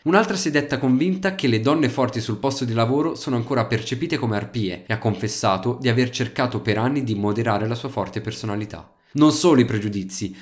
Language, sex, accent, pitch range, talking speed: Italian, male, native, 110-140 Hz, 205 wpm